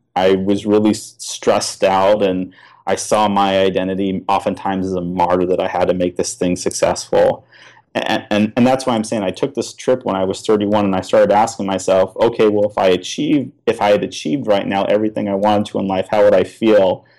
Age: 30-49